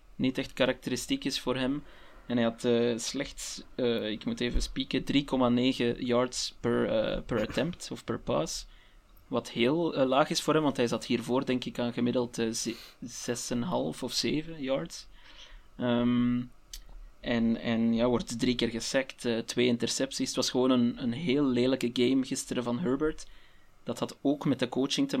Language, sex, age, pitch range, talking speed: Dutch, male, 20-39, 120-130 Hz, 170 wpm